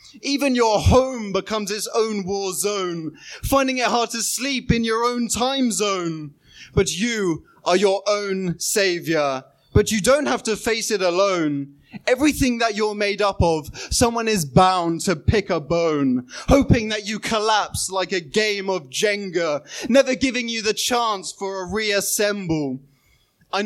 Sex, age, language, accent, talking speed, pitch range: male, 20-39, English, British, 160 wpm, 175-230 Hz